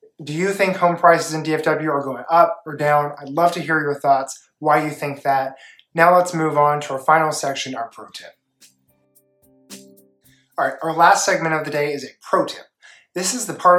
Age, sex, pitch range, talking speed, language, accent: 20-39, male, 145-175 Hz, 215 wpm, English, American